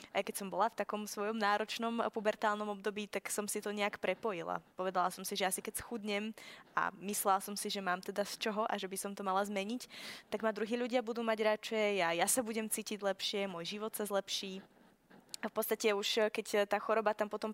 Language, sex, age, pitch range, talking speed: Slovak, female, 20-39, 200-225 Hz, 220 wpm